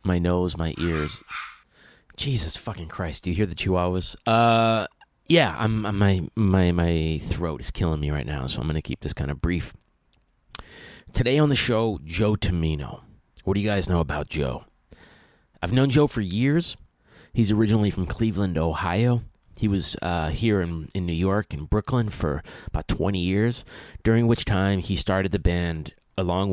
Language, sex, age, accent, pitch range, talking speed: English, male, 30-49, American, 80-105 Hz, 180 wpm